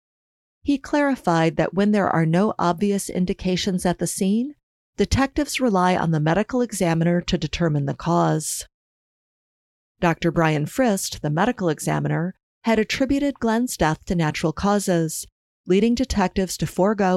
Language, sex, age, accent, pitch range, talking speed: English, female, 40-59, American, 165-205 Hz, 135 wpm